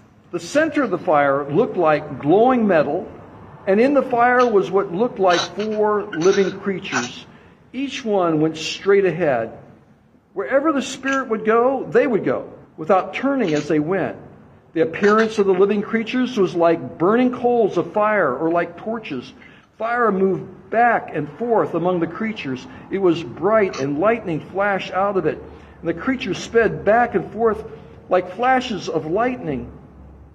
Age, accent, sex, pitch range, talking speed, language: 60-79, American, male, 170-235 Hz, 160 wpm, English